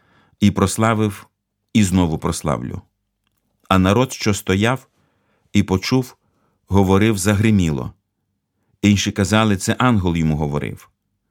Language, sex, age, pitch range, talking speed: Ukrainian, male, 50-69, 90-110 Hz, 100 wpm